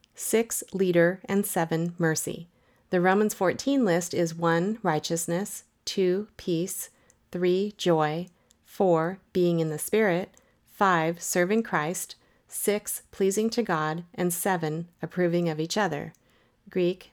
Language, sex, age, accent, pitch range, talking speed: English, female, 40-59, American, 170-205 Hz, 125 wpm